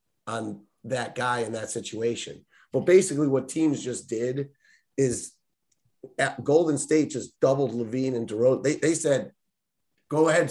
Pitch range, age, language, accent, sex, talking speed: 120-150 Hz, 30-49, English, American, male, 150 wpm